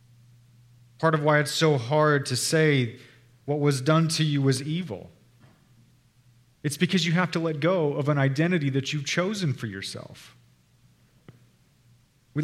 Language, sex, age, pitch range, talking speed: English, male, 30-49, 130-180 Hz, 150 wpm